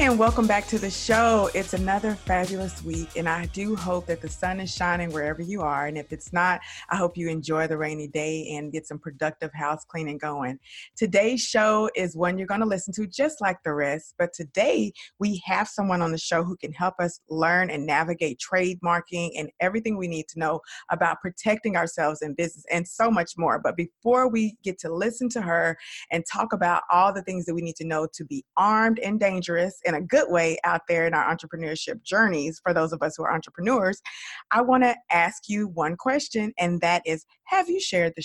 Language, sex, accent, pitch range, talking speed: English, female, American, 165-215 Hz, 220 wpm